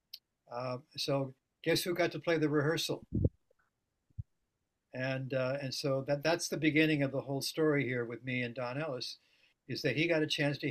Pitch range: 125-150 Hz